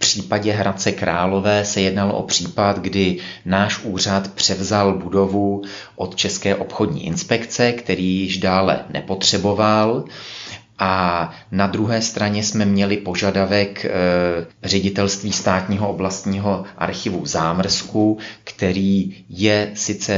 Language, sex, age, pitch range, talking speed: Czech, male, 30-49, 95-105 Hz, 105 wpm